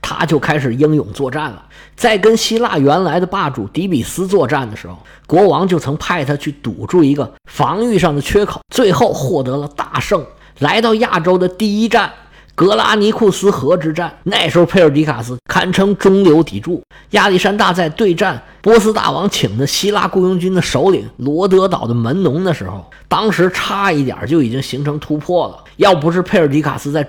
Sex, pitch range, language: male, 135-190 Hz, Chinese